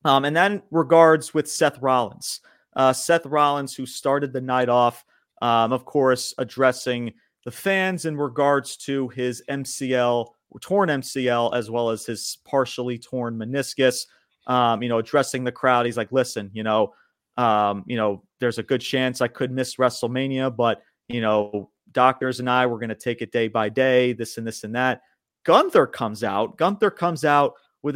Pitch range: 115-140 Hz